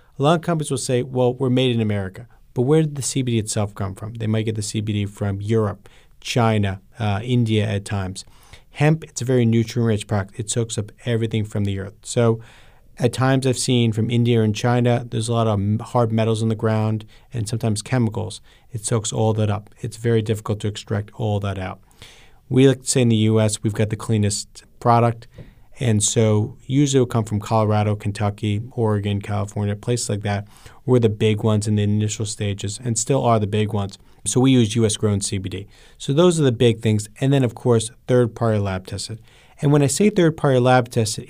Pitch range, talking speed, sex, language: 105-125 Hz, 210 wpm, male, English